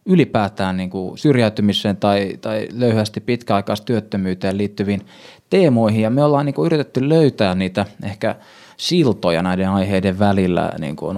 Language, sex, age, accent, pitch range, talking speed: Finnish, male, 20-39, native, 100-135 Hz, 145 wpm